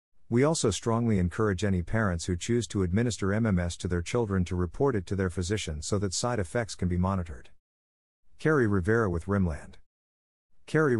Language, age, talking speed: English, 50-69, 175 wpm